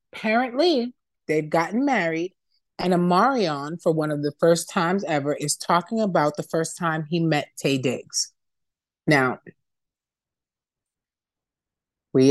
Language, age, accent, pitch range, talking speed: English, 30-49, American, 145-220 Hz, 125 wpm